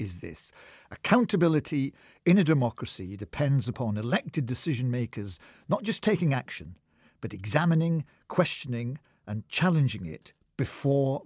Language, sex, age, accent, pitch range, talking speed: English, male, 50-69, British, 110-150 Hz, 110 wpm